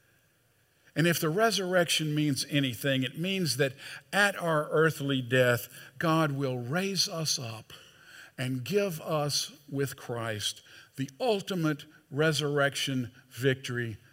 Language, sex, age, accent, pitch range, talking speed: English, male, 50-69, American, 125-150 Hz, 115 wpm